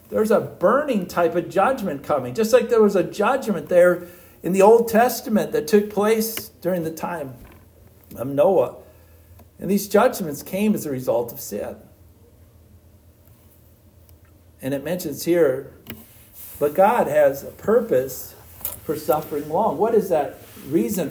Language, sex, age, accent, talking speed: English, male, 60-79, American, 145 wpm